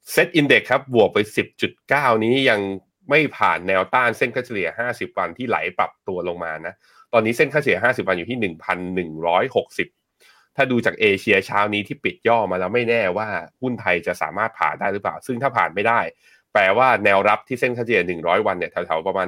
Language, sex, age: Thai, male, 20-39